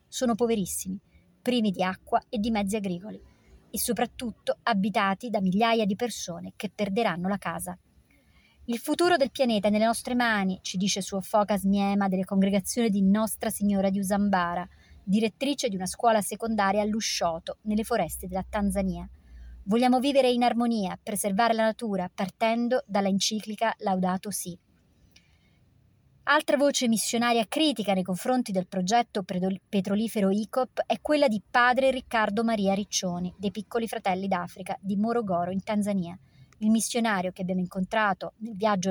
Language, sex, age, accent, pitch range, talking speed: Italian, male, 30-49, native, 190-230 Hz, 145 wpm